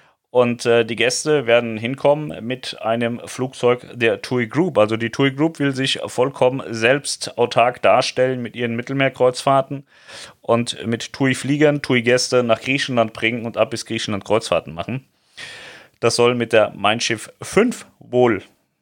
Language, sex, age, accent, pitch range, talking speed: German, male, 30-49, German, 110-130 Hz, 150 wpm